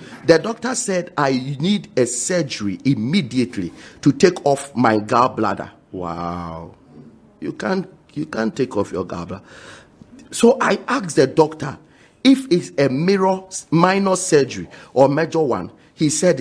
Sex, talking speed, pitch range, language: male, 135 wpm, 125-190 Hz, English